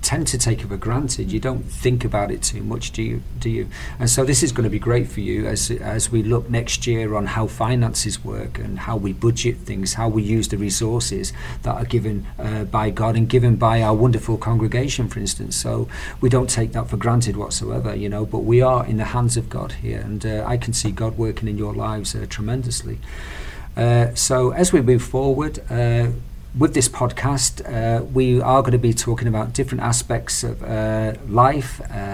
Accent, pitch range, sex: British, 110-125 Hz, male